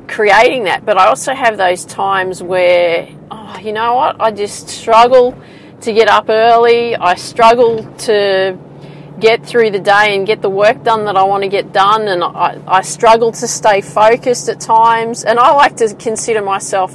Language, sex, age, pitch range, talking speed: English, female, 30-49, 185-225 Hz, 185 wpm